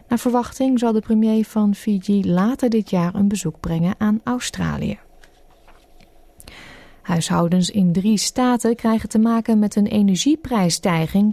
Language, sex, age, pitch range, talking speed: Dutch, female, 30-49, 185-230 Hz, 130 wpm